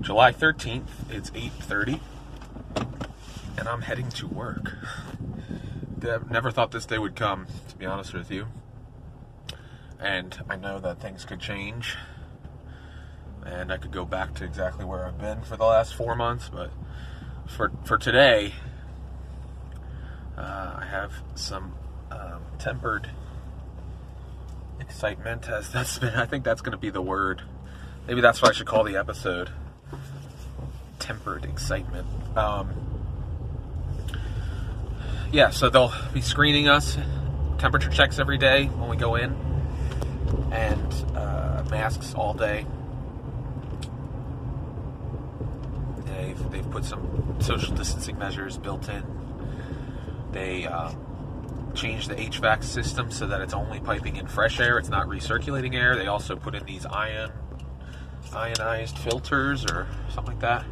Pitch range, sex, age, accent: 70-115 Hz, male, 30-49, American